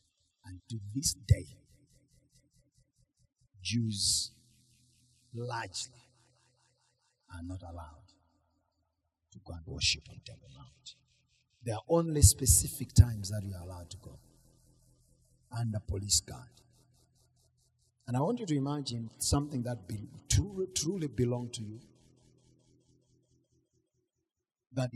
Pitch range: 120-150 Hz